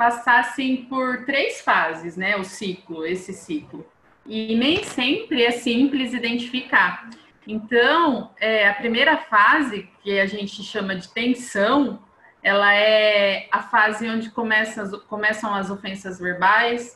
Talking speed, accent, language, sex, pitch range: 125 wpm, Brazilian, Portuguese, female, 185-235 Hz